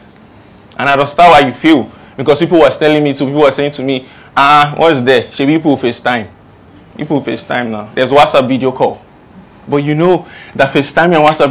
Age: 20-39